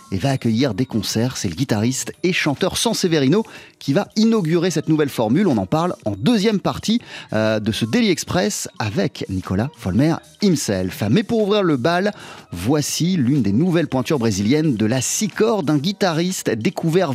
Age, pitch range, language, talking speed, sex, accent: 30-49, 120-185 Hz, French, 170 wpm, male, French